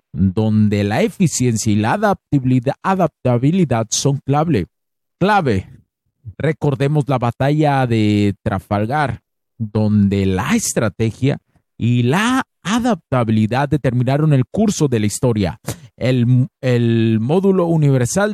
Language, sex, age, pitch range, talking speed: Spanish, male, 50-69, 115-155 Hz, 100 wpm